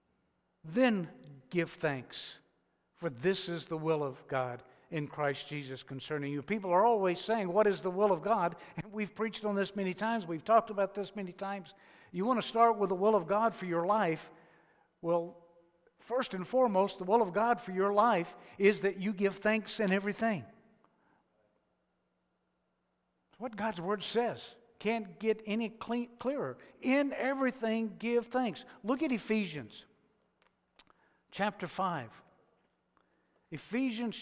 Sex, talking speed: male, 150 wpm